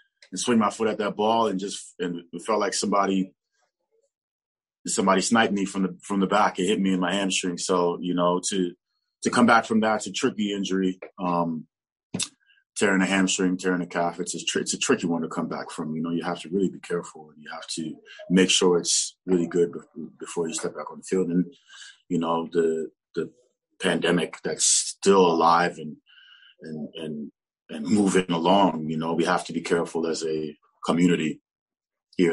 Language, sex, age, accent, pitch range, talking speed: English, male, 20-39, American, 80-95 Hz, 205 wpm